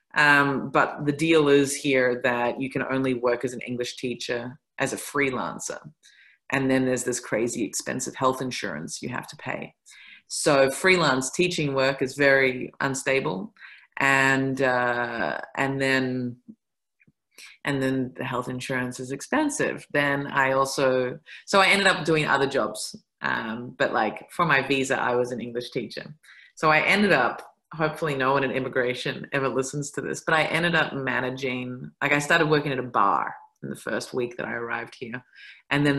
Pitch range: 125-140 Hz